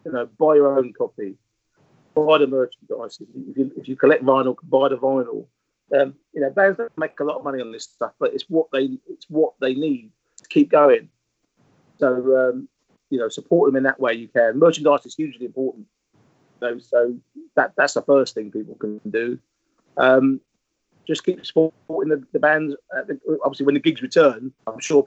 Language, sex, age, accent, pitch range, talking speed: English, male, 40-59, British, 135-160 Hz, 200 wpm